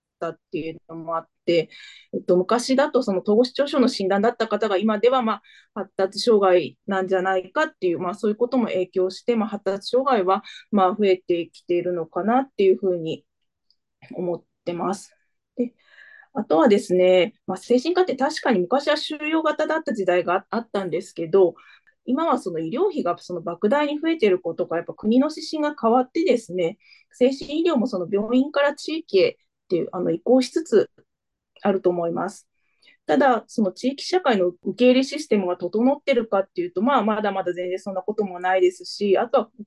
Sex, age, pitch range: female, 20-39, 180-260 Hz